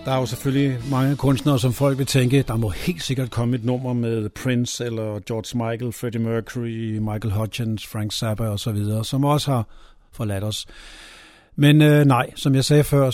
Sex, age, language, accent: male, 50-69, Danish, native